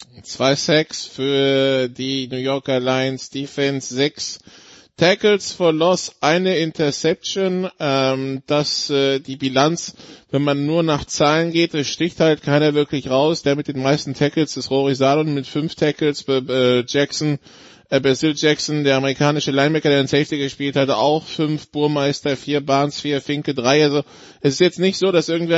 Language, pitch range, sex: German, 140-170 Hz, male